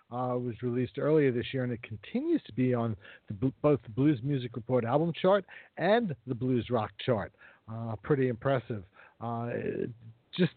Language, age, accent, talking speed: English, 50-69, American, 165 wpm